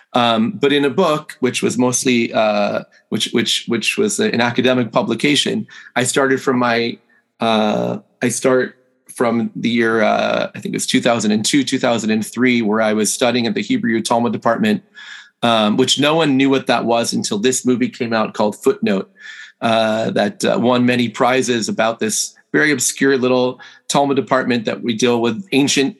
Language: English